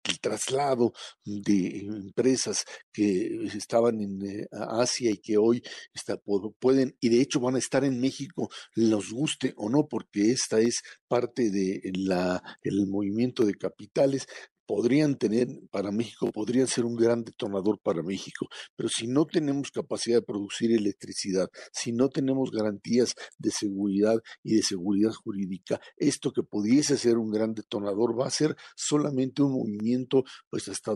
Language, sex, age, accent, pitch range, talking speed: Spanish, male, 60-79, Mexican, 105-130 Hz, 155 wpm